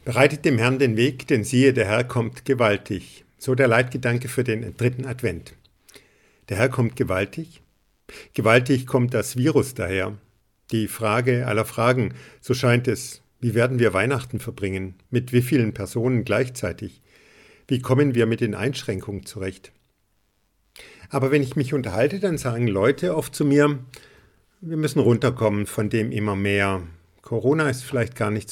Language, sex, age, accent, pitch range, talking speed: German, male, 50-69, German, 105-130 Hz, 155 wpm